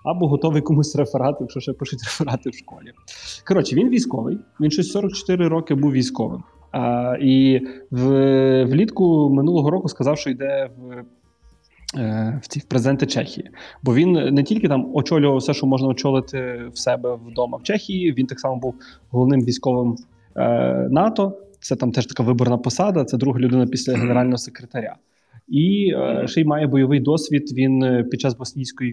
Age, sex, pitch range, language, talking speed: 20-39, male, 120-140 Hz, Ukrainian, 150 wpm